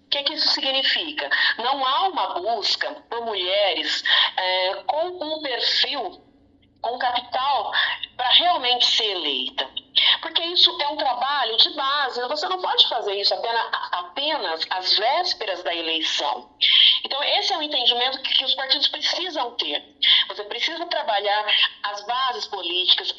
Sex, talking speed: female, 135 wpm